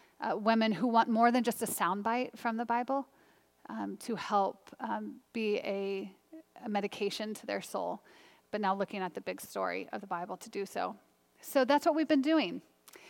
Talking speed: 195 wpm